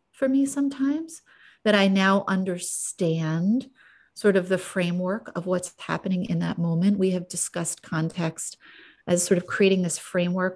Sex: female